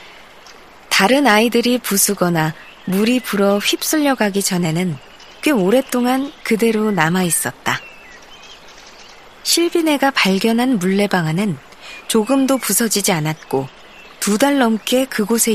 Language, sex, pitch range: Korean, female, 175-240 Hz